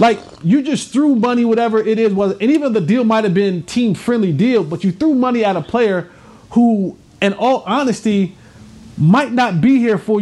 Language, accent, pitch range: English, American, 185-240 Hz